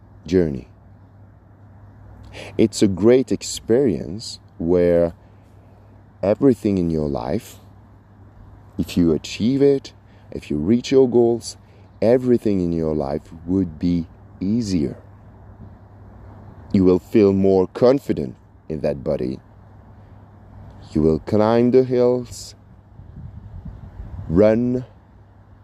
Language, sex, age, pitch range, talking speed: English, male, 40-59, 100-115 Hz, 95 wpm